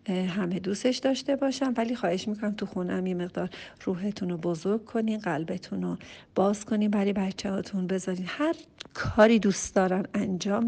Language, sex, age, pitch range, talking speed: Persian, female, 40-59, 185-230 Hz, 150 wpm